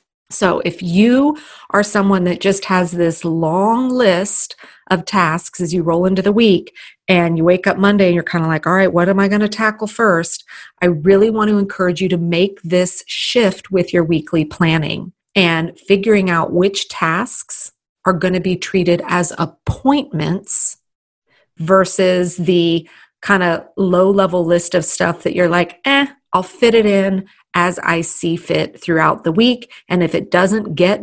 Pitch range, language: 175-205 Hz, English